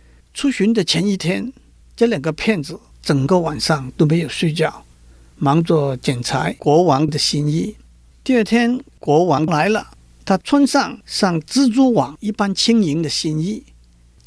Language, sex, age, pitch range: Chinese, male, 50-69, 140-200 Hz